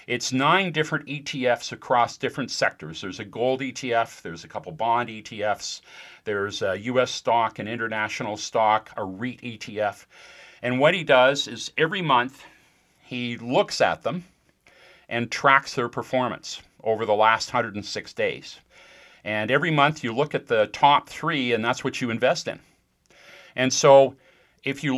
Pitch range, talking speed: 110-140 Hz, 155 wpm